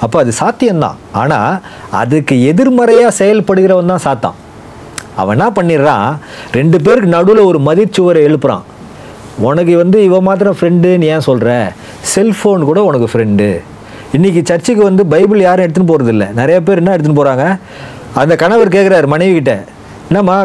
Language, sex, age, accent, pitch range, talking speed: Tamil, male, 40-59, native, 130-190 Hz, 135 wpm